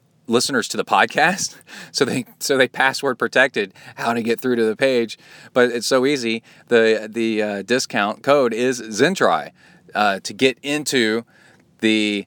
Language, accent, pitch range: English, American, 105-130 Hz